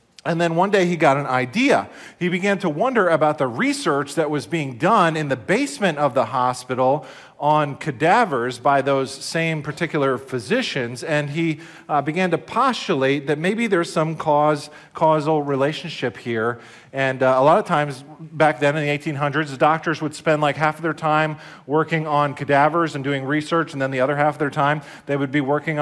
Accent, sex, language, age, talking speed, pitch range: American, male, English, 40-59, 190 wpm, 140-165 Hz